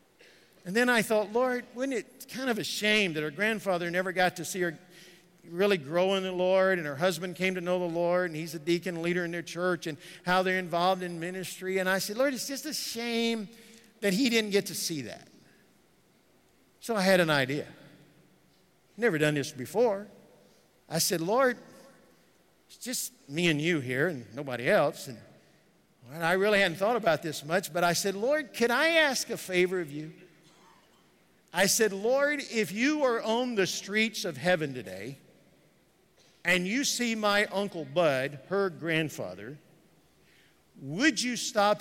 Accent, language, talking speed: American, English, 180 wpm